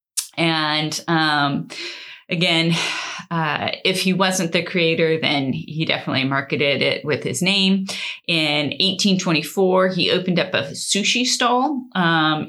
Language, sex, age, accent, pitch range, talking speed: English, female, 30-49, American, 160-205 Hz, 125 wpm